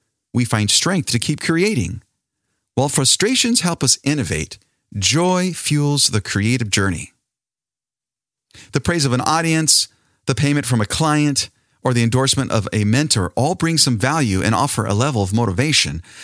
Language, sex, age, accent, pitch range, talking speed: English, male, 40-59, American, 105-145 Hz, 155 wpm